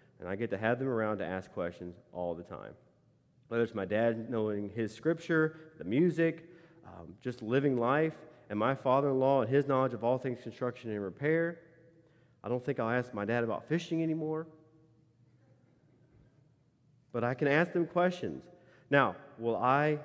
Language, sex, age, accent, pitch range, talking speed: English, male, 30-49, American, 115-150 Hz, 170 wpm